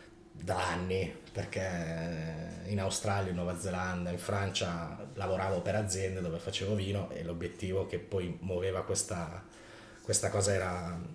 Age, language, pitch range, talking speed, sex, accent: 30-49, Italian, 95-110 Hz, 135 wpm, male, native